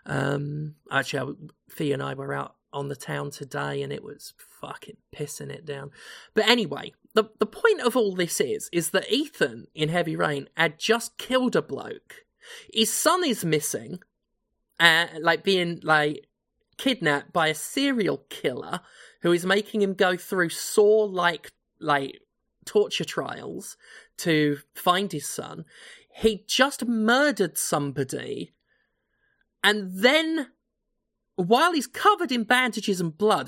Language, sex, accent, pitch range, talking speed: English, male, British, 165-240 Hz, 140 wpm